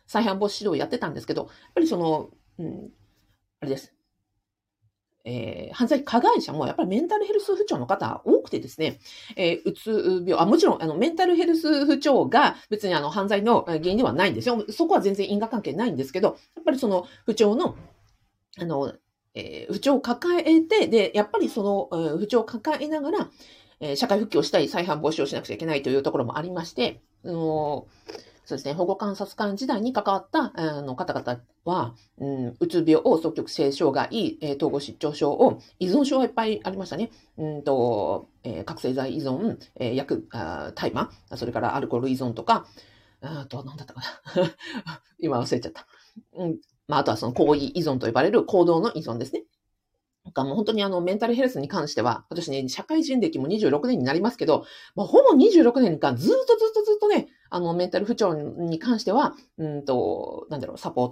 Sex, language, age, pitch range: female, Japanese, 40-59, 145-245 Hz